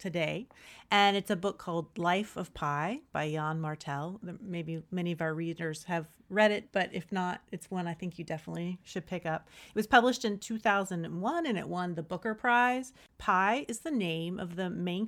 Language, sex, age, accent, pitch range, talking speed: English, female, 40-59, American, 170-205 Hz, 200 wpm